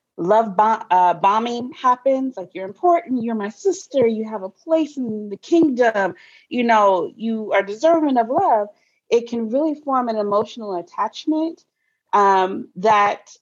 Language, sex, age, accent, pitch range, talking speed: English, female, 30-49, American, 180-240 Hz, 150 wpm